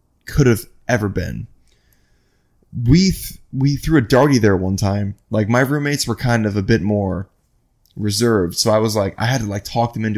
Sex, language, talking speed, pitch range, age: male, English, 195 wpm, 100-125 Hz, 20-39